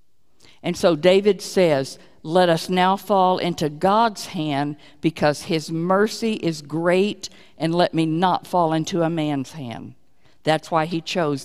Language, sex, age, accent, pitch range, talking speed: English, female, 50-69, American, 170-220 Hz, 150 wpm